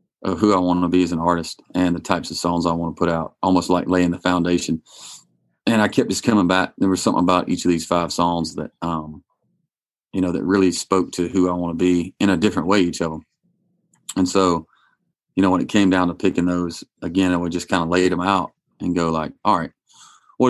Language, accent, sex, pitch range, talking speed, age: English, American, male, 85-95 Hz, 250 wpm, 30-49